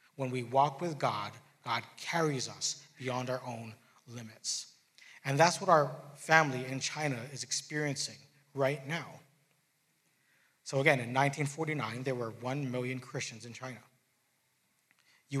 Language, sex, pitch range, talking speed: English, male, 125-155 Hz, 135 wpm